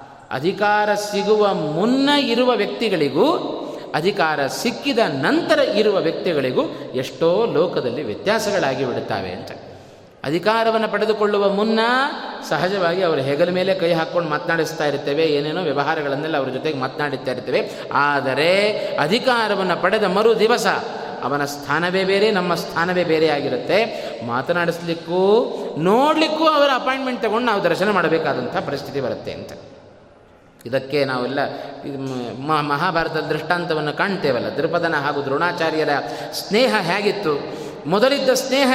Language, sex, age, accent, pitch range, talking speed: Kannada, male, 20-39, native, 150-230 Hz, 105 wpm